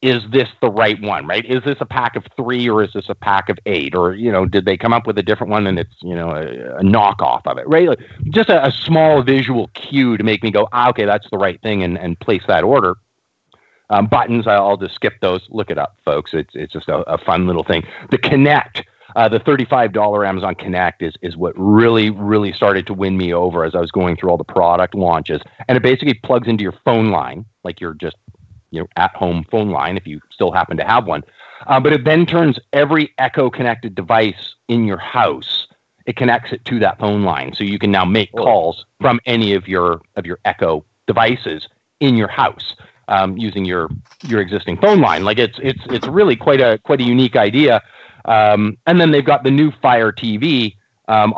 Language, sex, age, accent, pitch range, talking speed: English, male, 40-59, American, 95-125 Hz, 225 wpm